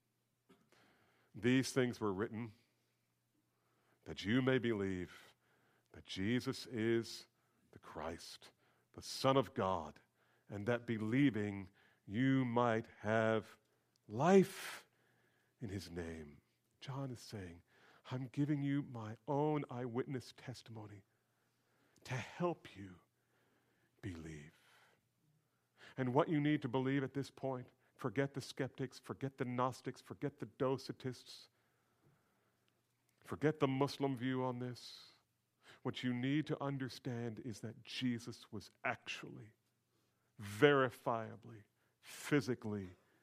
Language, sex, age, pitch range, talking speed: English, male, 40-59, 110-140 Hz, 105 wpm